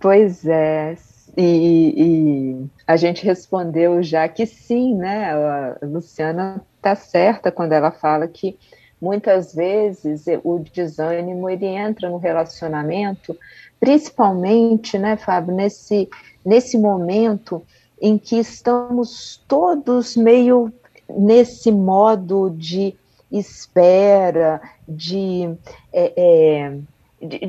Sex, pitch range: female, 165-205 Hz